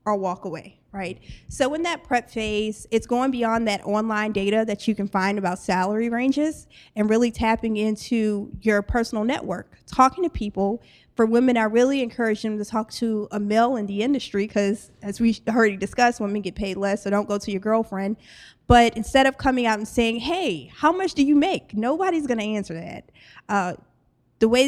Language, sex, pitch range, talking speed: English, female, 210-255 Hz, 200 wpm